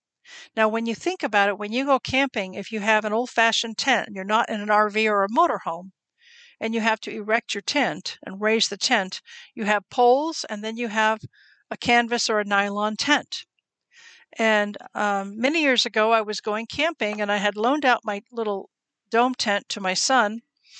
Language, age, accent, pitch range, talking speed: English, 50-69, American, 200-250 Hz, 200 wpm